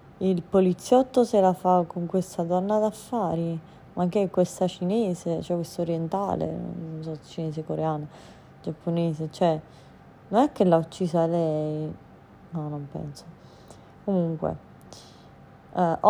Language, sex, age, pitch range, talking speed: Italian, female, 30-49, 155-180 Hz, 125 wpm